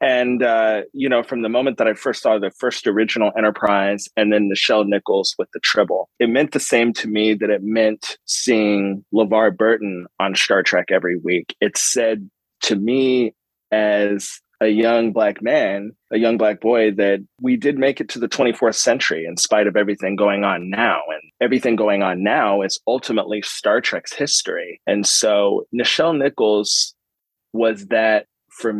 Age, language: 30-49, English